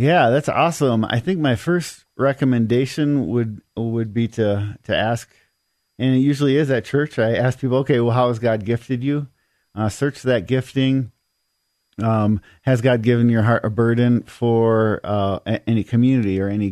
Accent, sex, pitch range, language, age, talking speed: American, male, 105-130 Hz, English, 50-69, 170 wpm